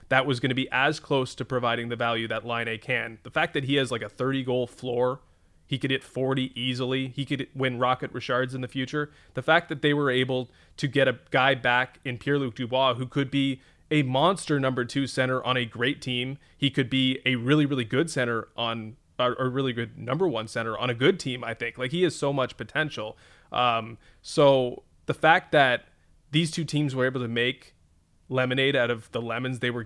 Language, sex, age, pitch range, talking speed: English, male, 20-39, 125-155 Hz, 220 wpm